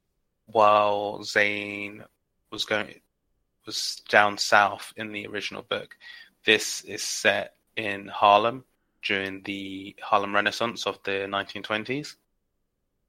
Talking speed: 105 wpm